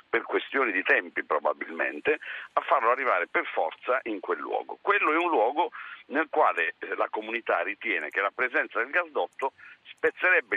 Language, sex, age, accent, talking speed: Italian, male, 50-69, native, 160 wpm